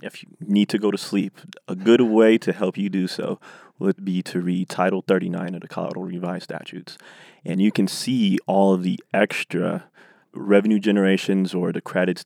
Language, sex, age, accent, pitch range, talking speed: English, male, 20-39, American, 95-110 Hz, 190 wpm